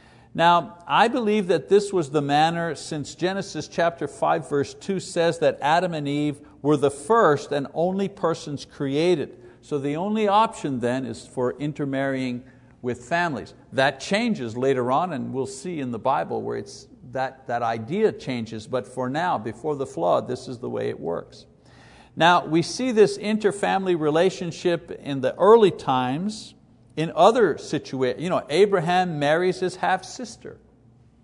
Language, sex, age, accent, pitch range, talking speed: English, male, 50-69, American, 130-185 Hz, 155 wpm